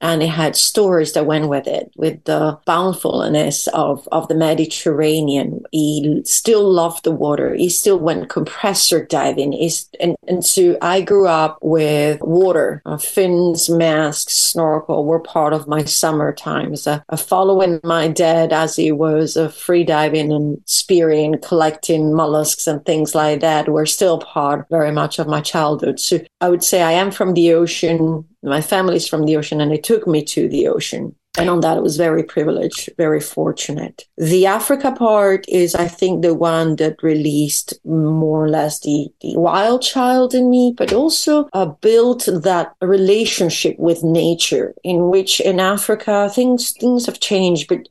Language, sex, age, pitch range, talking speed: English, female, 40-59, 155-190 Hz, 170 wpm